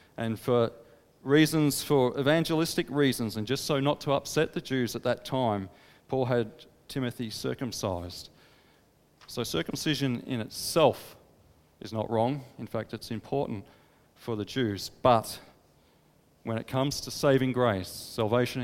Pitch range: 115-155 Hz